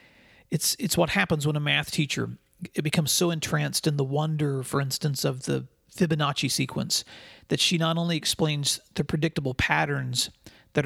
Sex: male